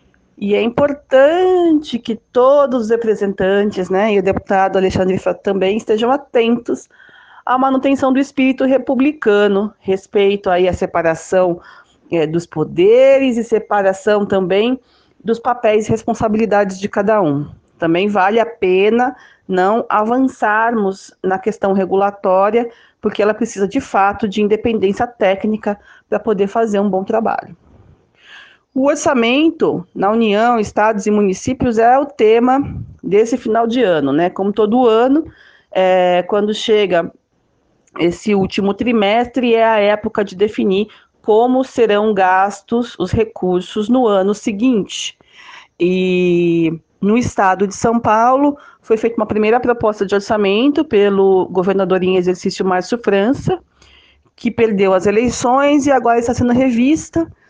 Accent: Brazilian